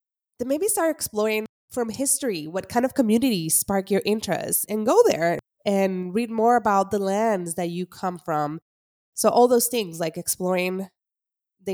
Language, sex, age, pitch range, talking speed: English, female, 20-39, 170-225 Hz, 170 wpm